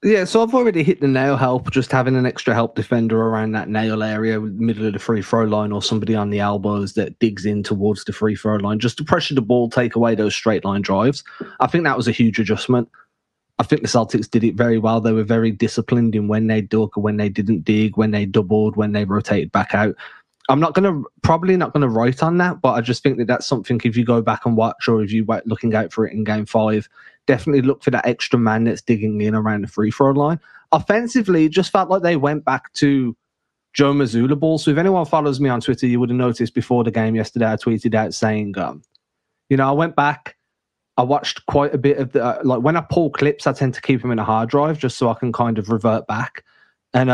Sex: male